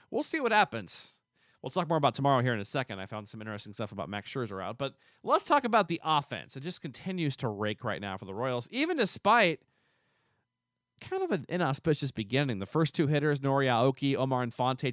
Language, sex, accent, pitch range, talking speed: English, male, American, 120-150 Hz, 215 wpm